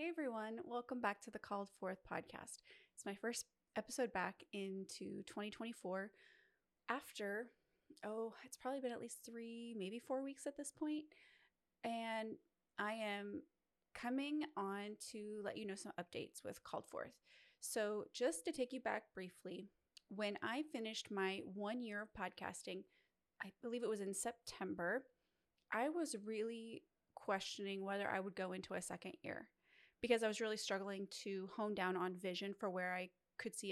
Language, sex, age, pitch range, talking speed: English, female, 20-39, 195-235 Hz, 165 wpm